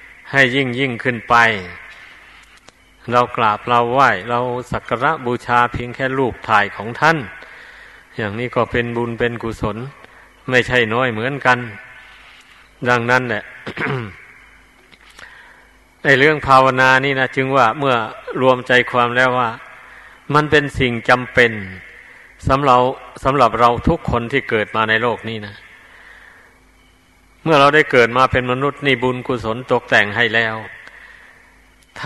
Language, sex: Thai, male